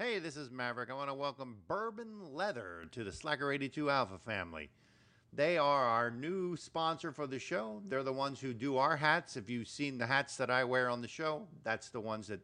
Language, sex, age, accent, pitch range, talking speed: English, male, 50-69, American, 120-165 Hz, 220 wpm